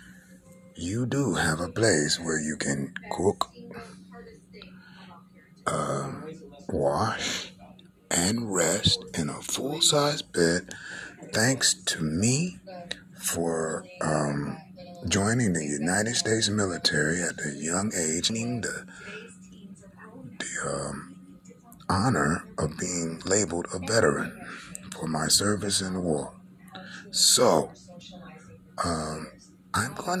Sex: male